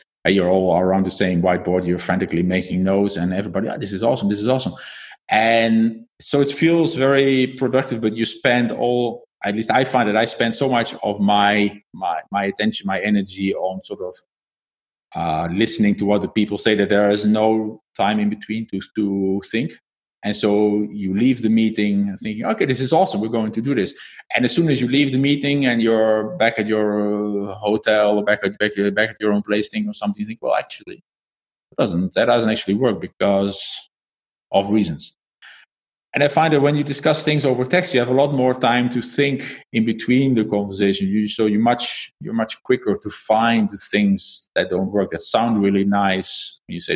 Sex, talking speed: male, 200 wpm